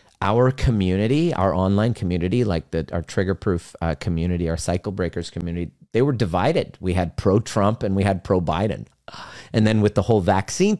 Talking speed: 160 wpm